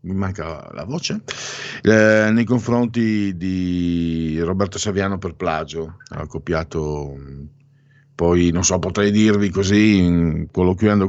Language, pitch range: Italian, 85-105 Hz